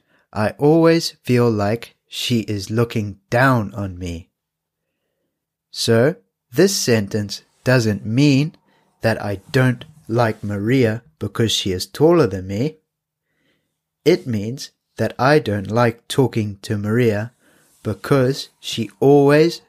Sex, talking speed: male, 115 wpm